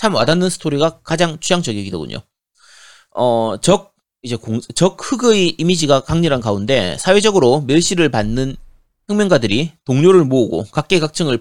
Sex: male